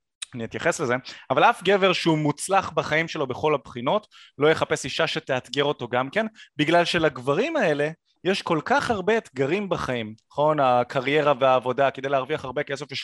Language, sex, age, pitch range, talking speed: Hebrew, male, 20-39, 130-190 Hz, 165 wpm